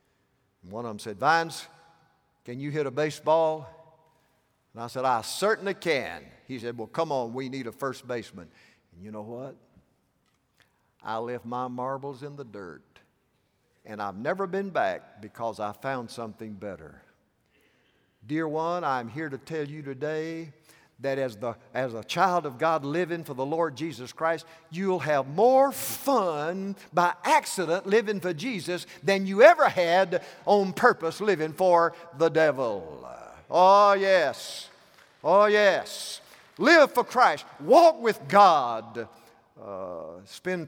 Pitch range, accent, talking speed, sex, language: 125-180 Hz, American, 150 wpm, male, English